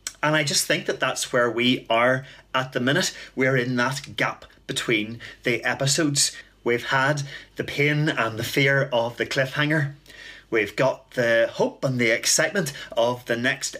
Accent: British